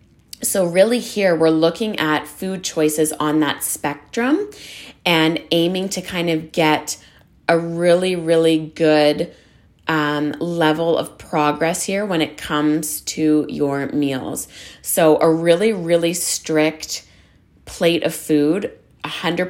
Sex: female